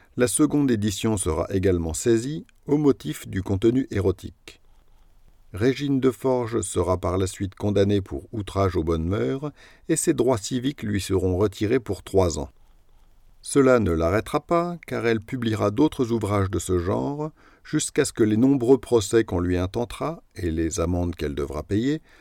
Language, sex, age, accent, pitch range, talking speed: French, male, 50-69, French, 95-130 Hz, 165 wpm